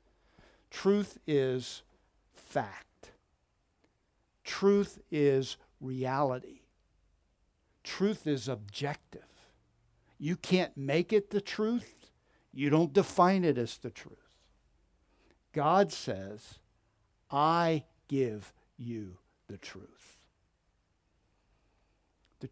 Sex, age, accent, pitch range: male, 60-79, American, 110-150 Hz